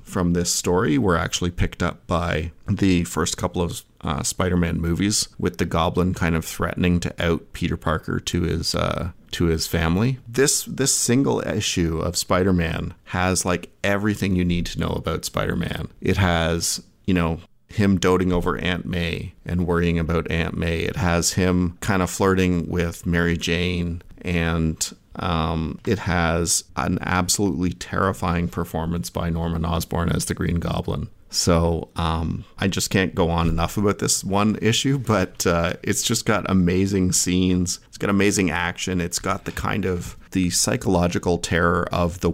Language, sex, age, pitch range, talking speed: English, male, 40-59, 85-95 Hz, 165 wpm